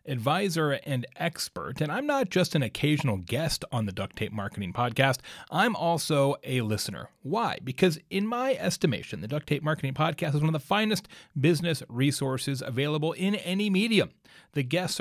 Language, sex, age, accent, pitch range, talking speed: English, male, 30-49, American, 120-165 Hz, 170 wpm